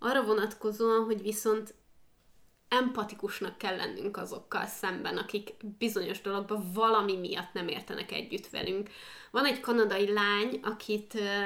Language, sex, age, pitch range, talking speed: Hungarian, female, 20-39, 205-240 Hz, 120 wpm